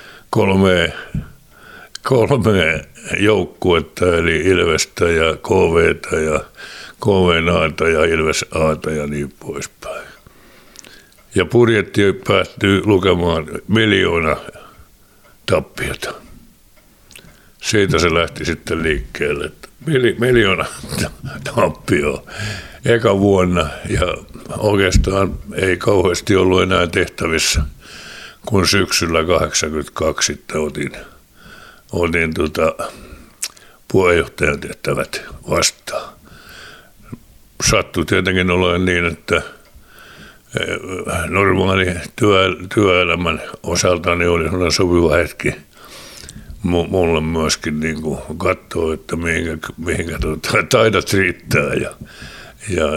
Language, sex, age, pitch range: Finnish, male, 60-79, 80-95 Hz